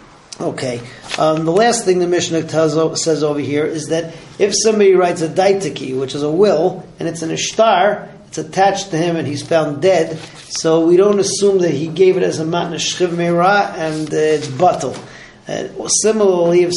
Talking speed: 195 wpm